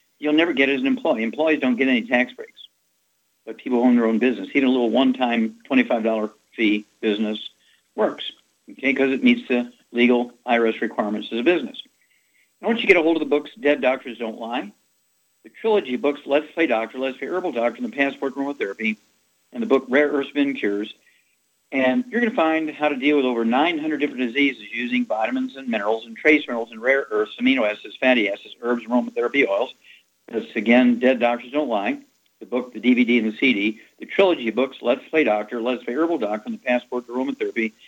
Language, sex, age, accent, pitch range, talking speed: English, male, 50-69, American, 115-145 Hz, 210 wpm